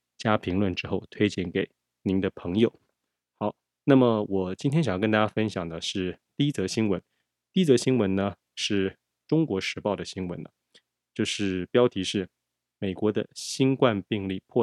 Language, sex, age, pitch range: Chinese, male, 20-39, 90-115 Hz